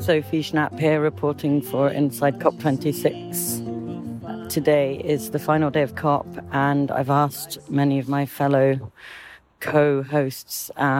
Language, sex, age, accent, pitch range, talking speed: English, female, 40-59, British, 135-155 Hz, 120 wpm